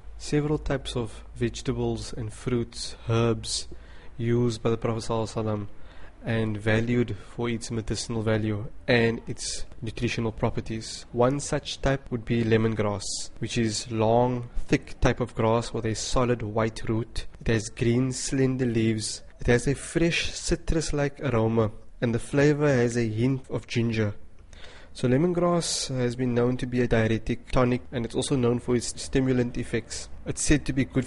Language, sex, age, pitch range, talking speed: English, male, 20-39, 110-130 Hz, 160 wpm